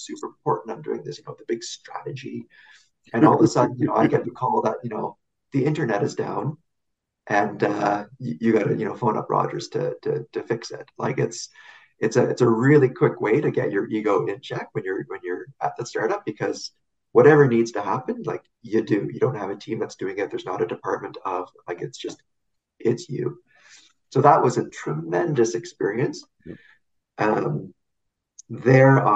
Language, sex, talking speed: English, male, 205 wpm